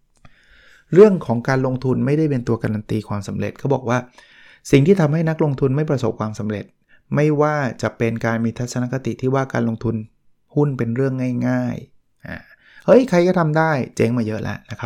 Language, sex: Thai, male